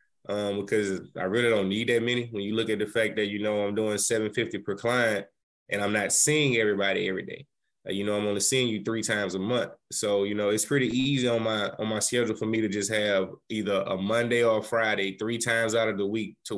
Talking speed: 250 wpm